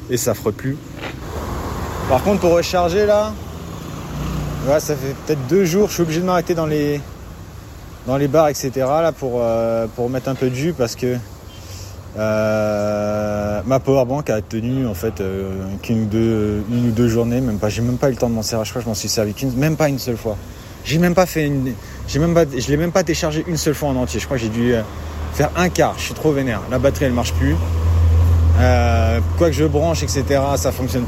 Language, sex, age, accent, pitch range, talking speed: French, male, 30-49, French, 100-135 Hz, 230 wpm